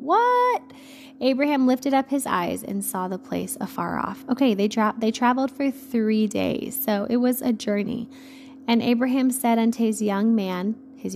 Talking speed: 175 wpm